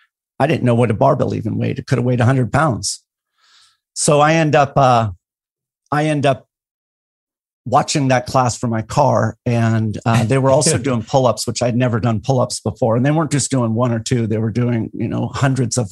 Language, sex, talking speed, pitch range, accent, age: English, male, 215 wpm, 115-130 Hz, American, 50-69